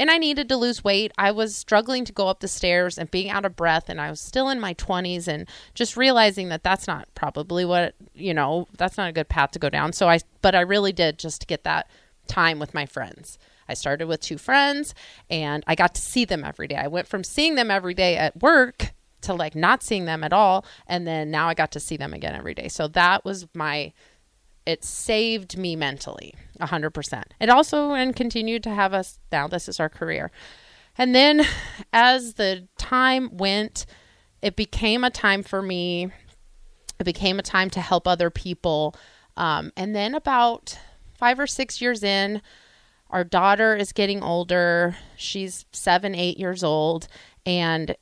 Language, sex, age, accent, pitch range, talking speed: English, female, 30-49, American, 165-220 Hz, 200 wpm